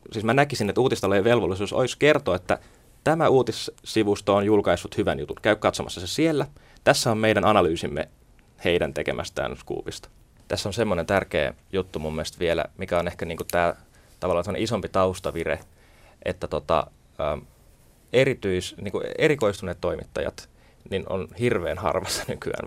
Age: 20-39